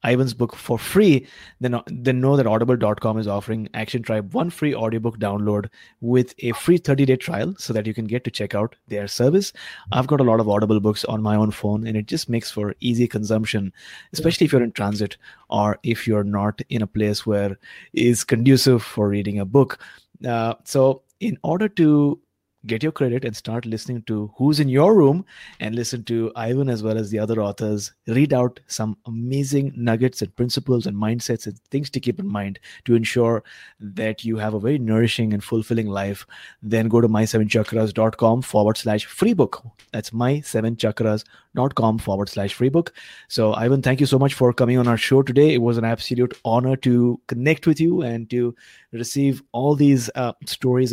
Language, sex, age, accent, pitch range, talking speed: English, male, 30-49, Indian, 110-130 Hz, 195 wpm